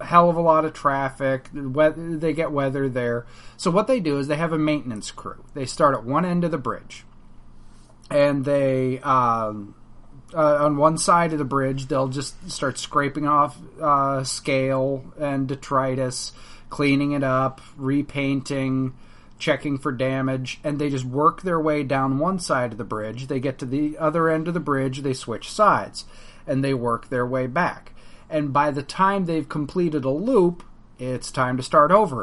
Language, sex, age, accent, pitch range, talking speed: English, male, 30-49, American, 135-170 Hz, 180 wpm